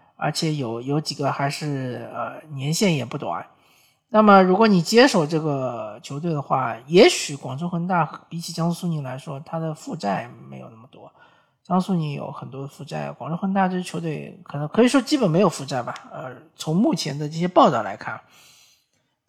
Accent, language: native, Chinese